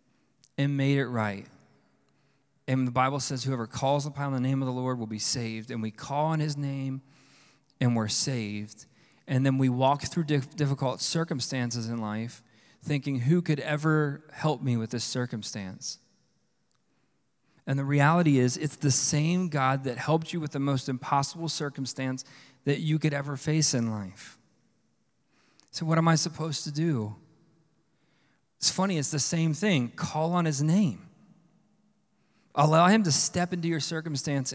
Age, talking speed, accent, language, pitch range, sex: 40-59, 160 wpm, American, English, 130-160 Hz, male